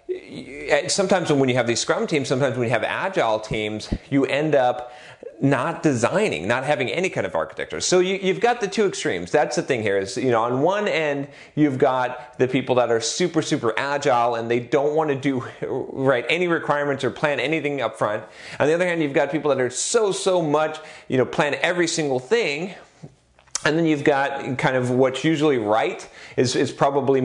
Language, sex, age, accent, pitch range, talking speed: English, male, 40-59, American, 125-160 Hz, 210 wpm